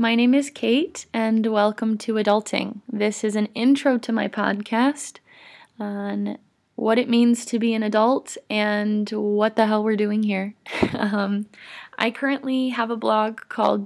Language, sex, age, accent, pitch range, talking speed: English, female, 20-39, American, 200-230 Hz, 160 wpm